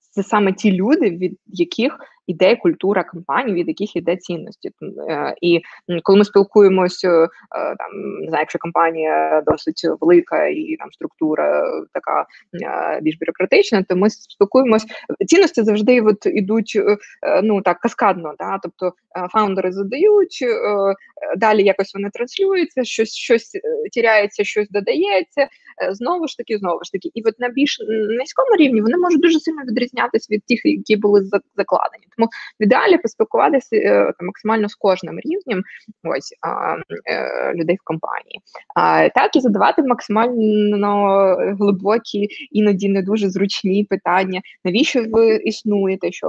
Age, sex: 20-39, female